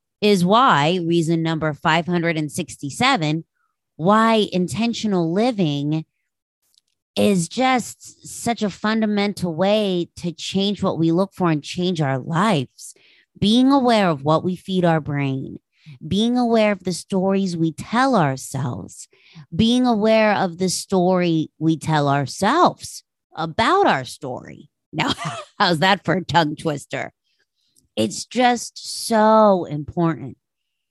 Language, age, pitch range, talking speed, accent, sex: English, 30-49, 150-200 Hz, 120 wpm, American, female